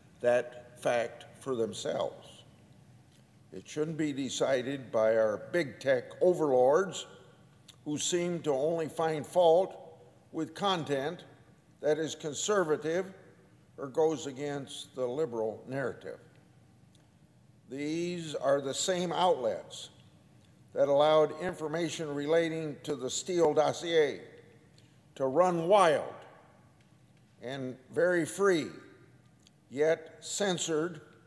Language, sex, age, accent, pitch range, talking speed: English, male, 50-69, American, 140-165 Hz, 100 wpm